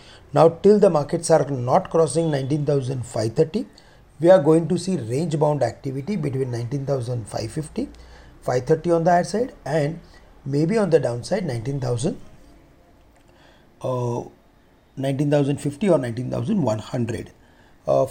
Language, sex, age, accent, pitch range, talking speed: English, male, 40-59, Indian, 125-160 Hz, 110 wpm